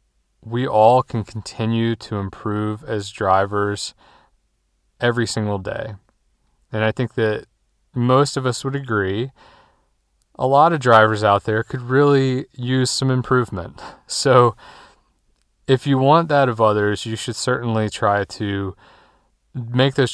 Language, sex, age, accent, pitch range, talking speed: English, male, 30-49, American, 100-120 Hz, 135 wpm